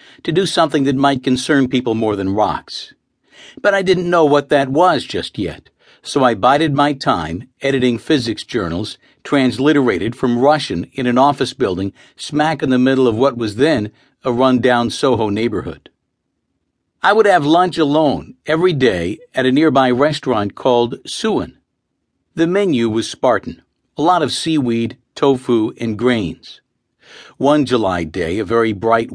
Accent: American